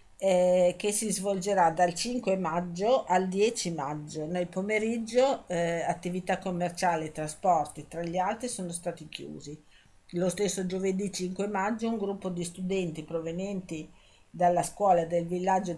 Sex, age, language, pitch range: female, 50-69, Italian, 170-195 Hz